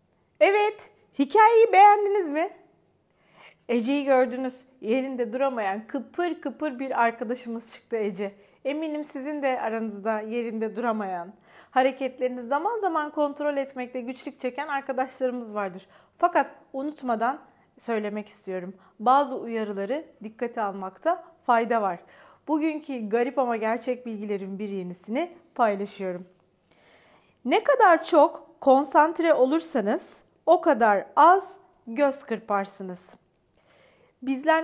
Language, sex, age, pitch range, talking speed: Turkish, female, 40-59, 230-300 Hz, 100 wpm